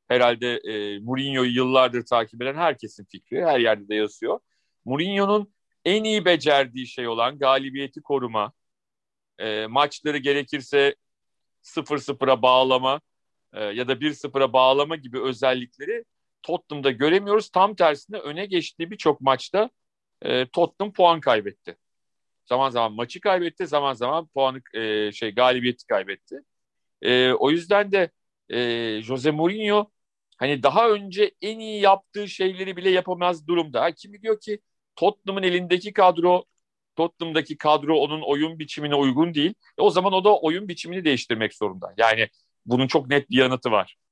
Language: Turkish